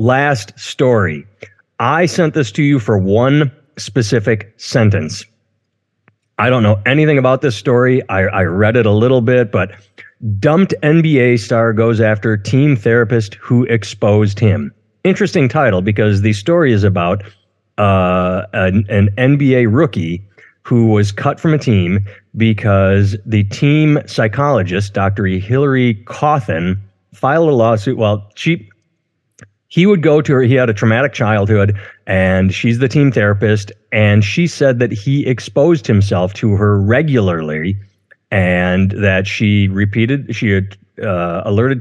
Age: 30-49